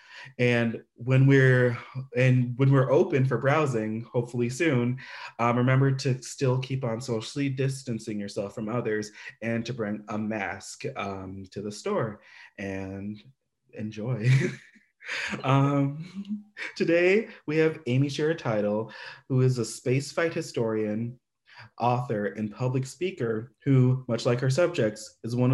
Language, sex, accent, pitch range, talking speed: English, male, American, 110-135 Hz, 130 wpm